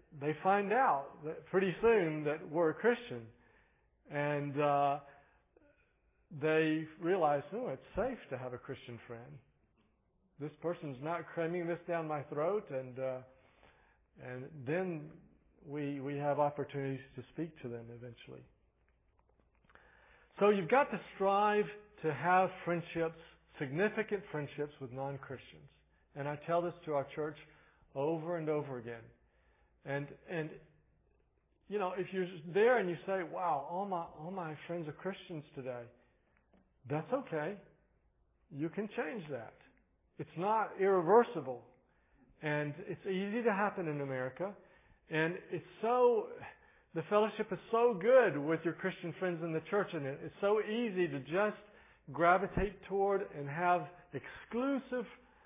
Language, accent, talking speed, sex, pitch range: English, American, 140 wpm, male, 145-195 Hz